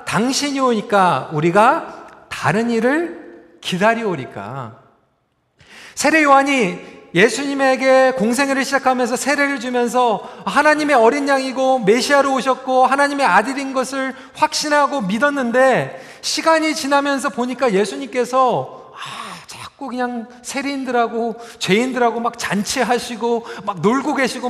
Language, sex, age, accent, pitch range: Korean, male, 40-59, native, 220-275 Hz